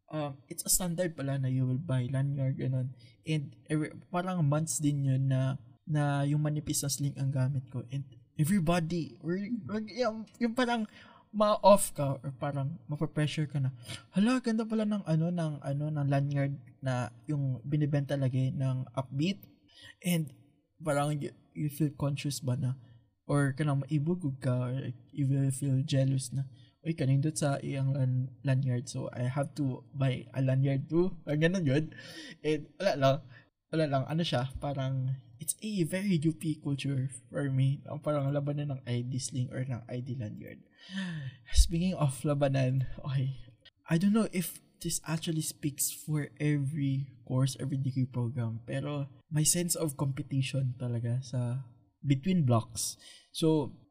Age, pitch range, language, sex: 20-39, 130-155 Hz, Filipino, male